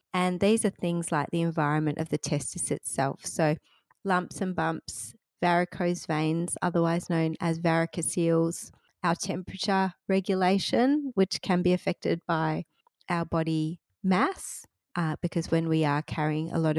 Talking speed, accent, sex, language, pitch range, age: 145 wpm, Australian, female, English, 155-180 Hz, 30-49